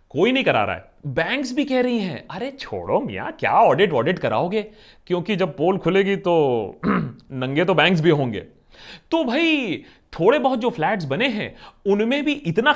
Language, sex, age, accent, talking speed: Hindi, male, 30-49, native, 180 wpm